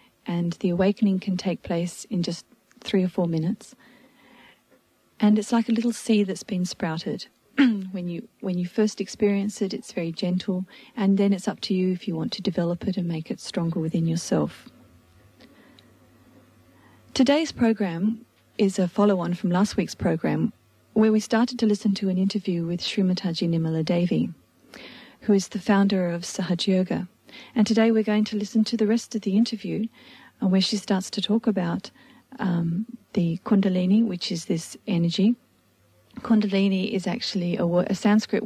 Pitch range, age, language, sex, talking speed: 180-225 Hz, 40-59, English, female, 170 wpm